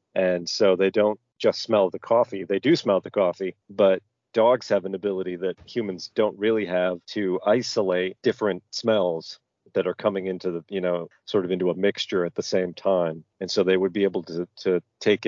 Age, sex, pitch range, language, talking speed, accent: 40-59, male, 90-105 Hz, English, 205 wpm, American